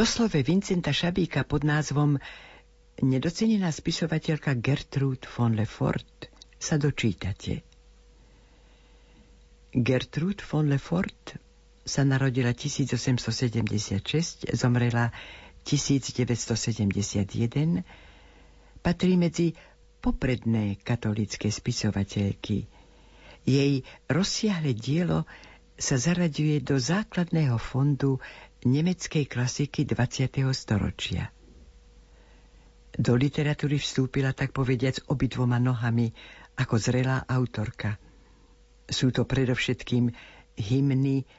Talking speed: 75 wpm